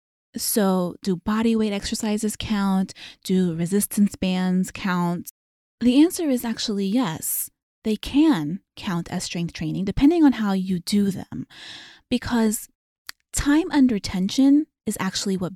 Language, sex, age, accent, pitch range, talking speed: English, female, 20-39, American, 175-230 Hz, 130 wpm